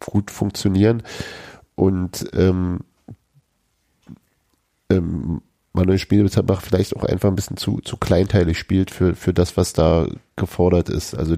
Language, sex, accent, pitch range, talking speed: German, male, German, 85-100 Hz, 125 wpm